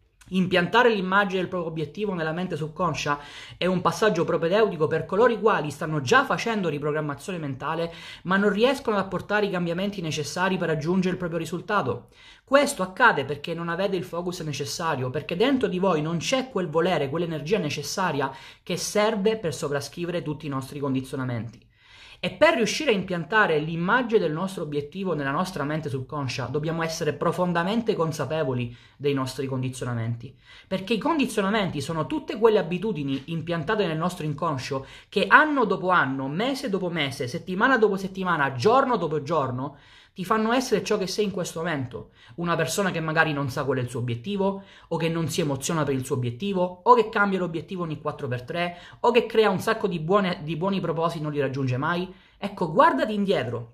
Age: 30-49